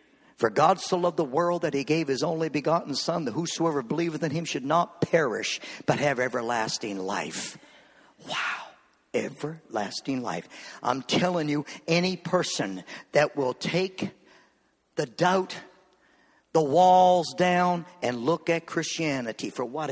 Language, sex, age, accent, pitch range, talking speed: English, male, 50-69, American, 160-260 Hz, 140 wpm